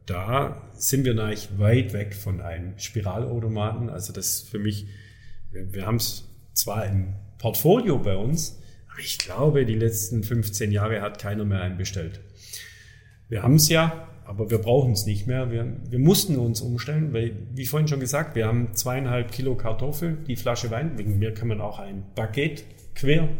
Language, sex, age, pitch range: German, male, 40-59, 105-130 Hz